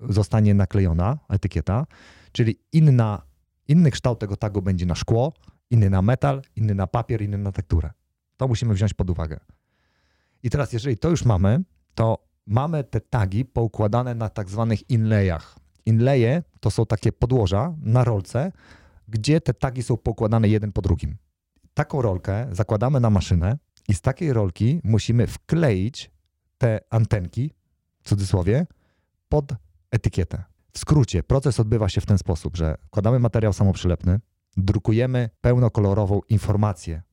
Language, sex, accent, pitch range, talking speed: Polish, male, native, 95-120 Hz, 140 wpm